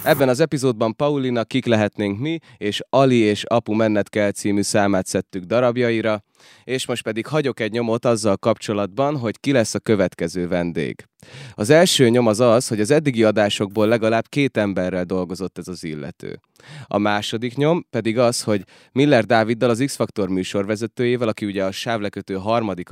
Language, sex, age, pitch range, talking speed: Hungarian, male, 20-39, 100-125 Hz, 160 wpm